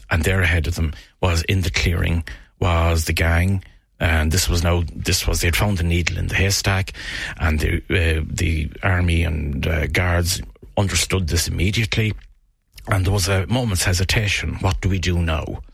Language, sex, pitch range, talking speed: English, male, 85-95 Hz, 180 wpm